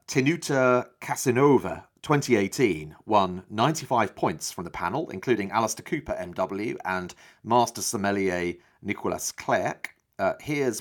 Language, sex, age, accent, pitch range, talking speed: English, male, 40-59, British, 100-130 Hz, 110 wpm